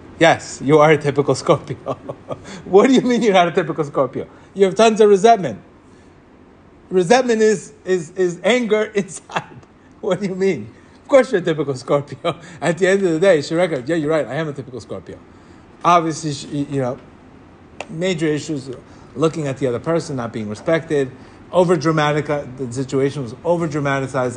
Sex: male